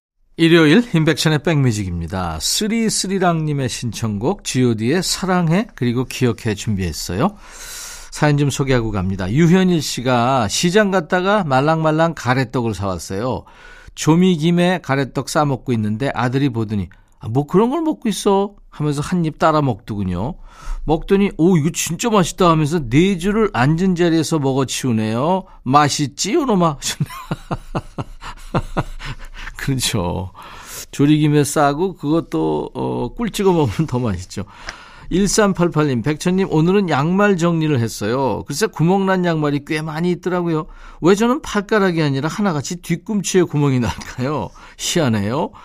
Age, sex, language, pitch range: 50-69, male, Korean, 125-180 Hz